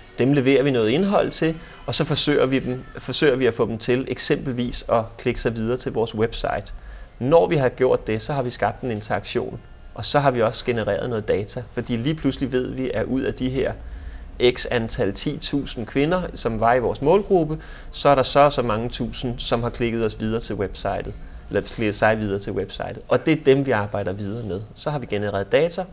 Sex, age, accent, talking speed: male, 30-49, native, 225 wpm